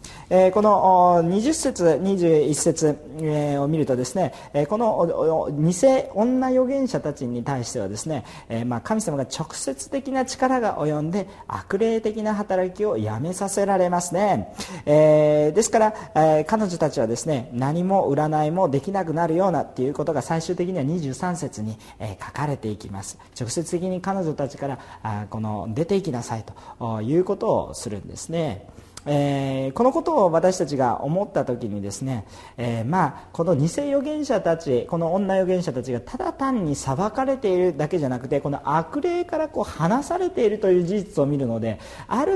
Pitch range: 125-195 Hz